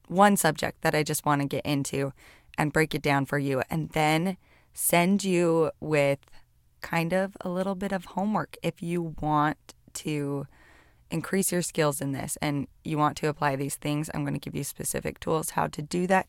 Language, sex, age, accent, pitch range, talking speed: English, female, 20-39, American, 140-175 Hz, 200 wpm